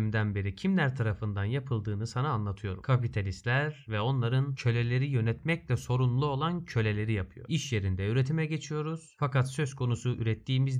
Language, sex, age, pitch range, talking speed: Turkish, male, 30-49, 105-135 Hz, 130 wpm